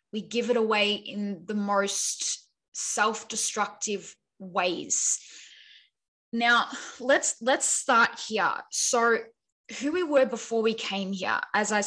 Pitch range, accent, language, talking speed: 200-230 Hz, Australian, English, 120 wpm